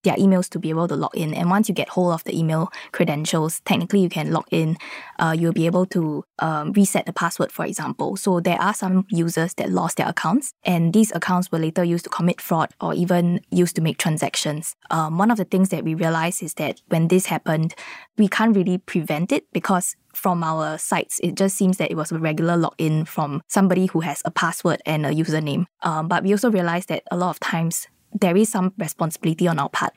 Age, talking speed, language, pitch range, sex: 20-39, 230 wpm, English, 160-190 Hz, female